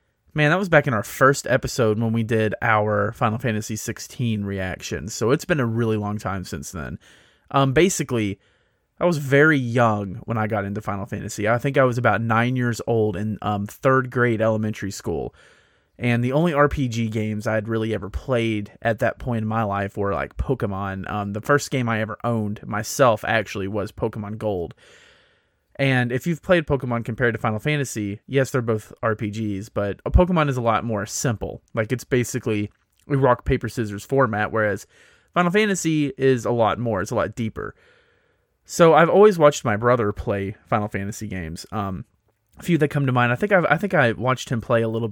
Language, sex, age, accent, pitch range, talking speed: English, male, 30-49, American, 105-135 Hz, 200 wpm